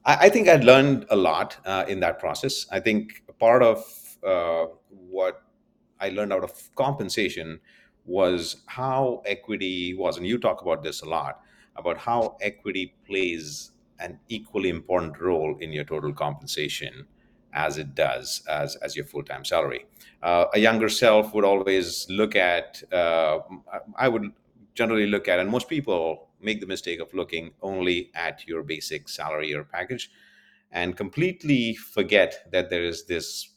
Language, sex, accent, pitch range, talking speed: English, male, Indian, 85-105 Hz, 160 wpm